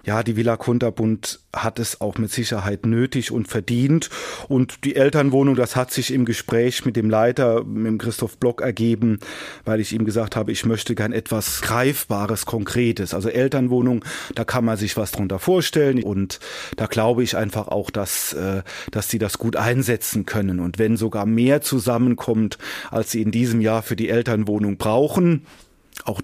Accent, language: German, German